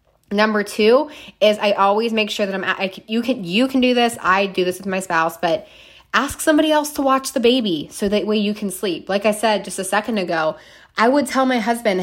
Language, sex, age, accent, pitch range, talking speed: English, female, 20-39, American, 180-225 Hz, 235 wpm